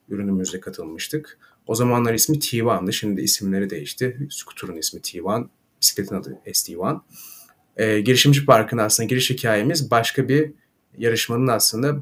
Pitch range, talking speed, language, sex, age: 105-125 Hz, 135 wpm, Turkish, male, 30-49